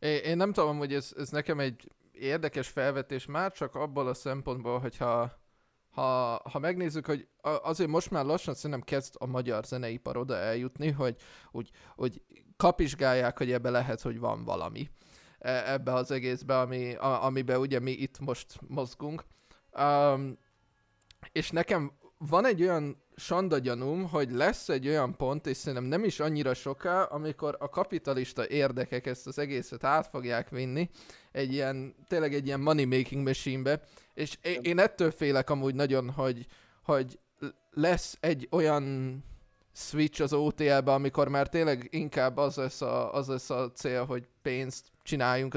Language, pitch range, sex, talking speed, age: Hungarian, 130-150 Hz, male, 150 wpm, 20-39